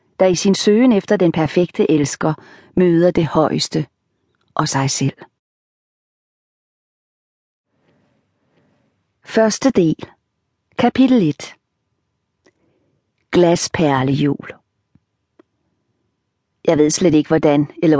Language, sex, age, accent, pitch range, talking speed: Danish, female, 40-59, native, 150-185 Hz, 85 wpm